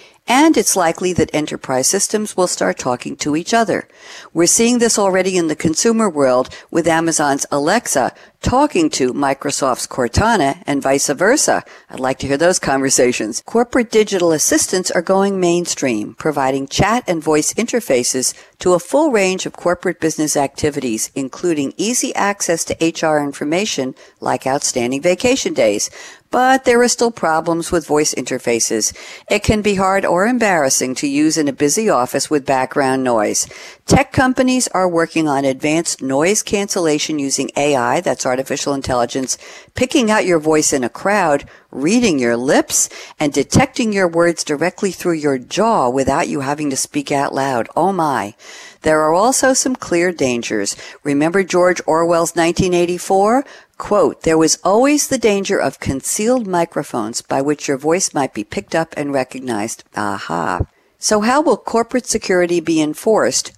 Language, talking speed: English, 155 wpm